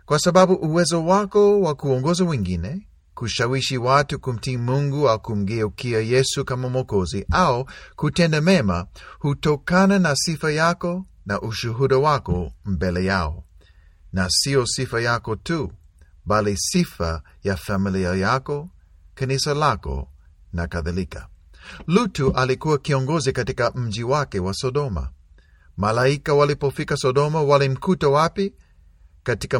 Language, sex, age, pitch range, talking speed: Swahili, male, 50-69, 90-145 Hz, 115 wpm